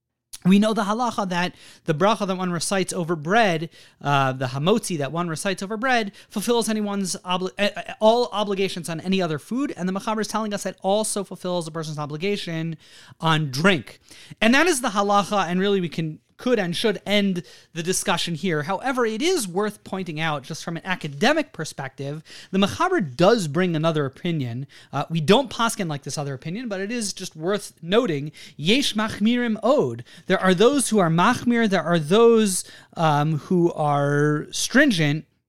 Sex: male